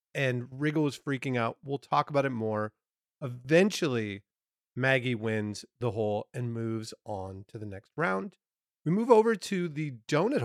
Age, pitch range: 40-59, 110-150 Hz